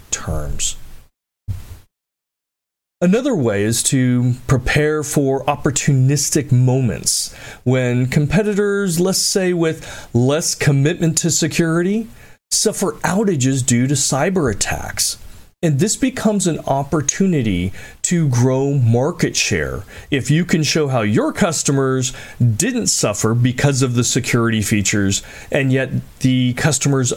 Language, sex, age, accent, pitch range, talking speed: English, male, 40-59, American, 120-165 Hz, 115 wpm